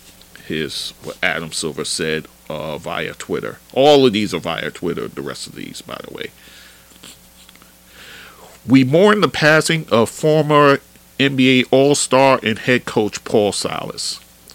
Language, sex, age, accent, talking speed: English, male, 40-59, American, 140 wpm